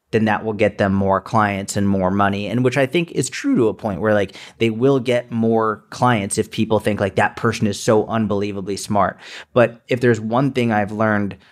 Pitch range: 105-125 Hz